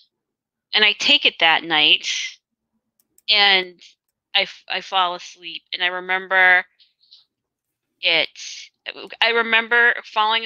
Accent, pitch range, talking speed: American, 180-215 Hz, 105 wpm